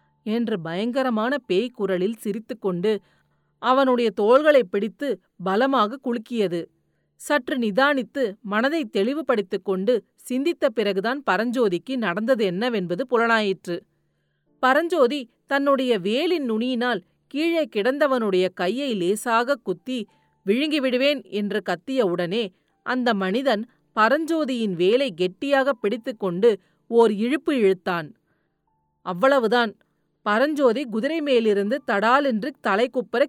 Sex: female